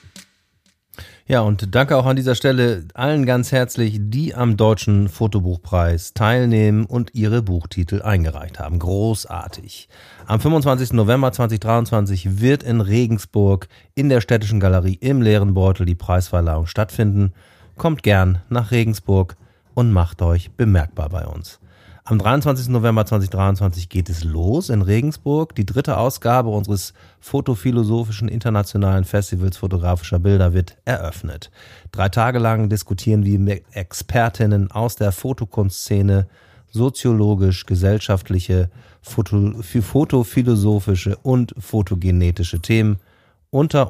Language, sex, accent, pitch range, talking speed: German, male, German, 95-120 Hz, 120 wpm